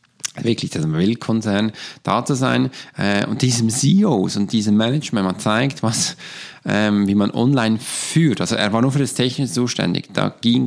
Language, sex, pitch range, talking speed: German, male, 100-125 Hz, 175 wpm